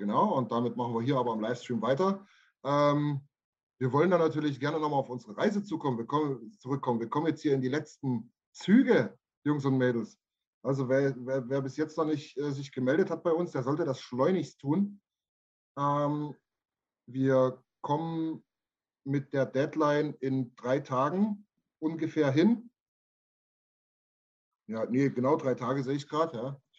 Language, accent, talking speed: German, German, 160 wpm